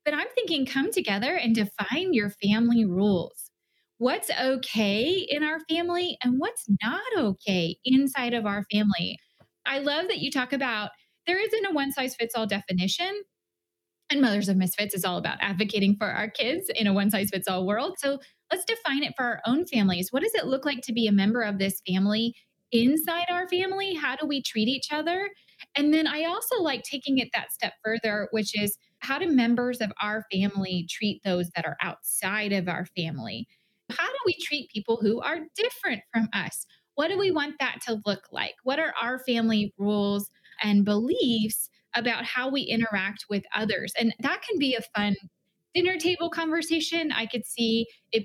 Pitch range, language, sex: 205-300 Hz, English, female